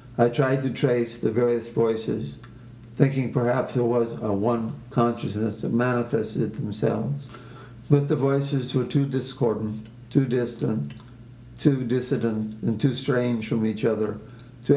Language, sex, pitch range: English, male, 115-130 Hz